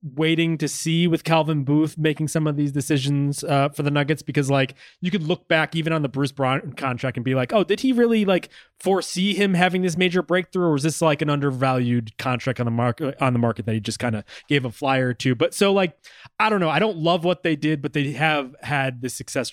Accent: American